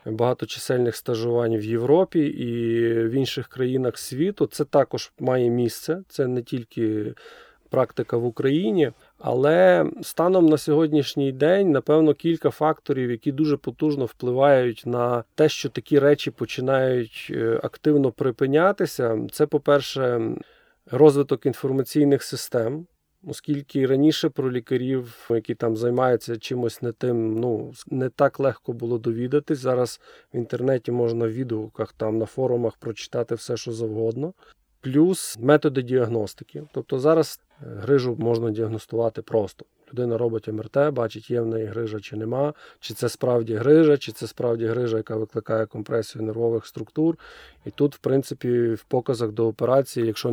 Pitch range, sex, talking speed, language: 115-145 Hz, male, 135 wpm, Ukrainian